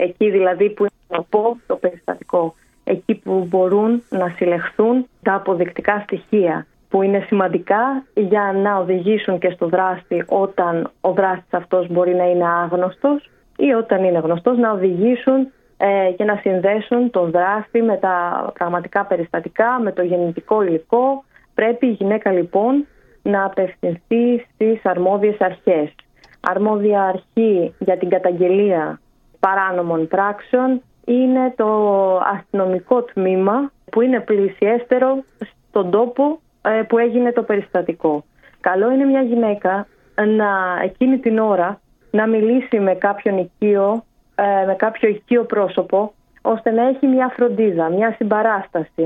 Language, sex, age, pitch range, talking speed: Greek, female, 30-49, 185-225 Hz, 120 wpm